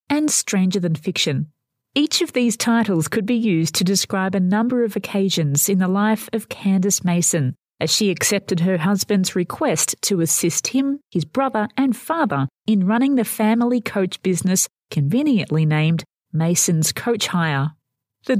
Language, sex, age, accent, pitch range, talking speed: English, female, 40-59, Australian, 165-225 Hz, 155 wpm